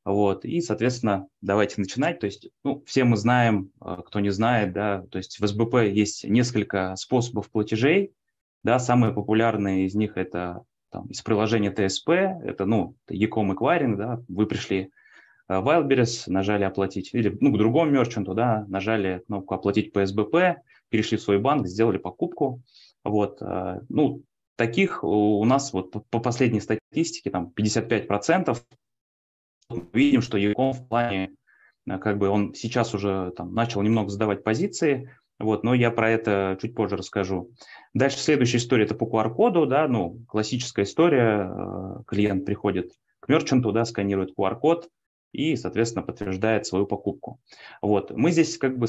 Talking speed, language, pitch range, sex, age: 150 wpm, Russian, 100-120 Hz, male, 20-39